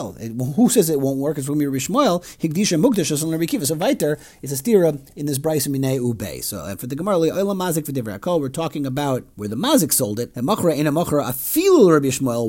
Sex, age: male, 40-59